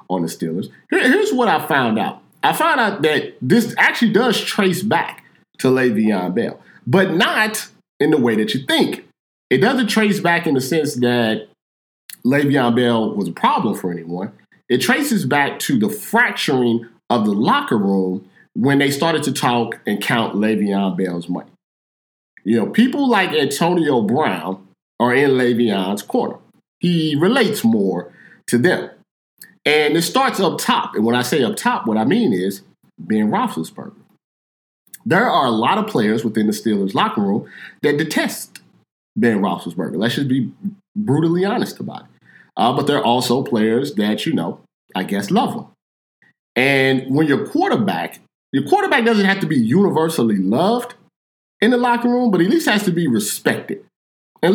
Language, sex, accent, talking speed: English, male, American, 170 wpm